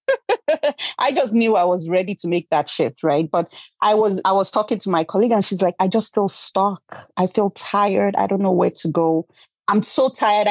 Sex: female